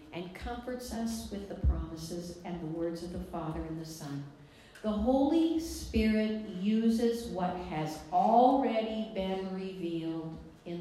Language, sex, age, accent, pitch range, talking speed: English, female, 60-79, American, 155-215 Hz, 140 wpm